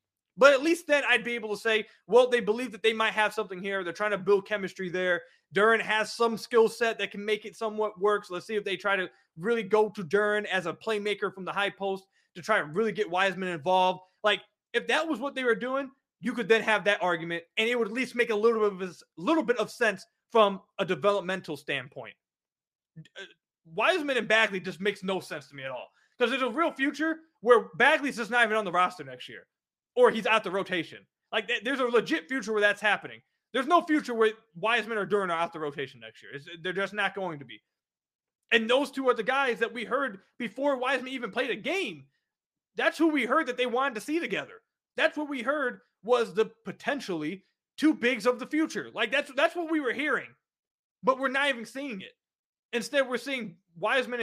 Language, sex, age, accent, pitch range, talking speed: English, male, 20-39, American, 195-255 Hz, 230 wpm